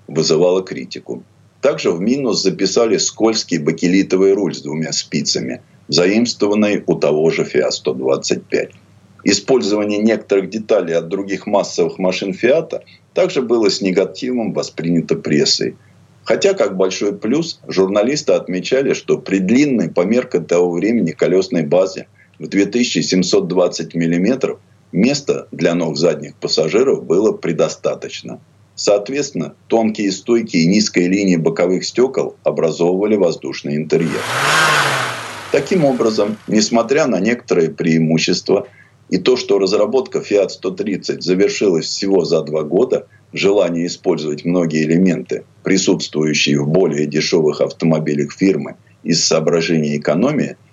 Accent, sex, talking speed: native, male, 115 wpm